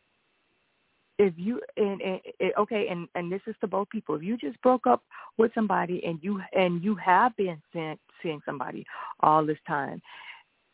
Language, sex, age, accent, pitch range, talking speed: English, female, 40-59, American, 160-195 Hz, 180 wpm